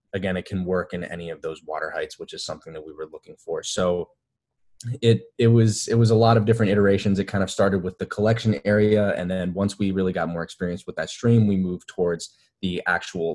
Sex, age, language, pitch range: male, 20-39, English, 90-110 Hz